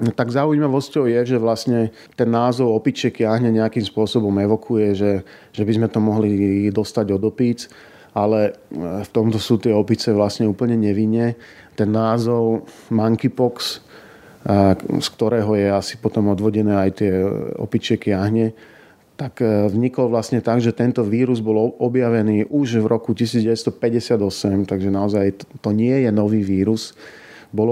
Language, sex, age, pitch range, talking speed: Slovak, male, 40-59, 105-120 Hz, 140 wpm